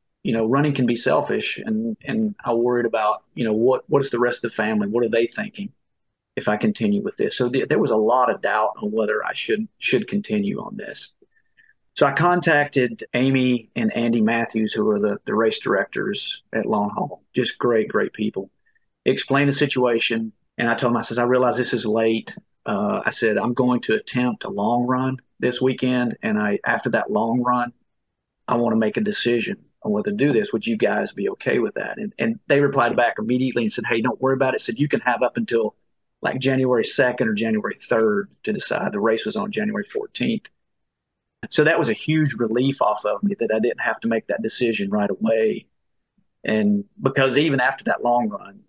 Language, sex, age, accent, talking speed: English, male, 40-59, American, 215 wpm